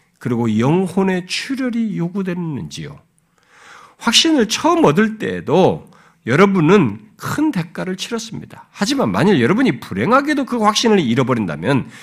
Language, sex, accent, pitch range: Korean, male, native, 145-220 Hz